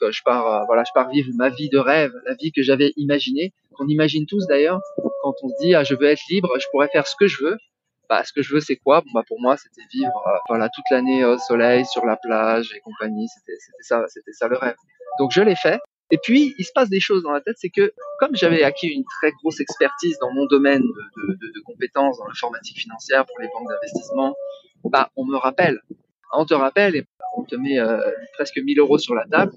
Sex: male